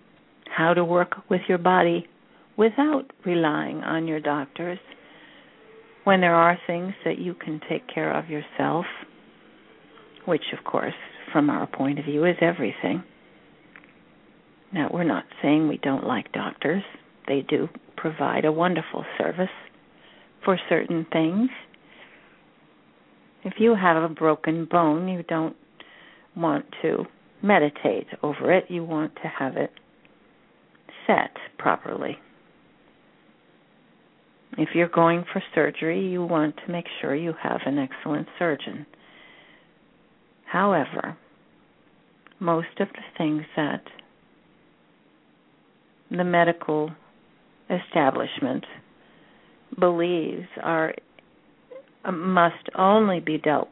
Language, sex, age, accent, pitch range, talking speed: English, female, 50-69, American, 160-185 Hz, 110 wpm